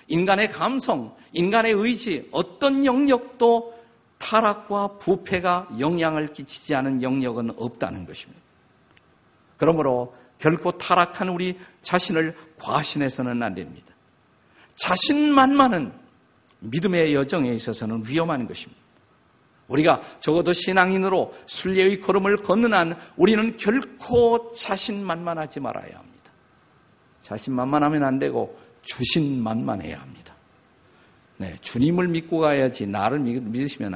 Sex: male